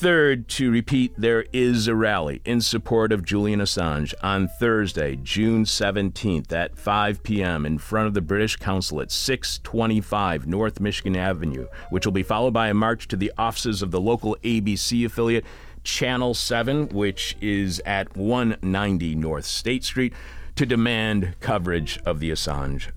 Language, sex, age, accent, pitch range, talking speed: English, male, 50-69, American, 85-115 Hz, 155 wpm